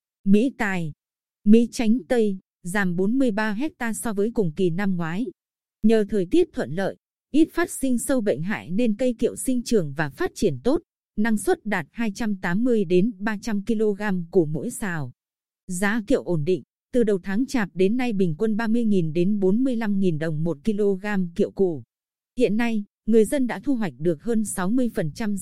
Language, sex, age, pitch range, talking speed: Vietnamese, female, 20-39, 195-240 Hz, 165 wpm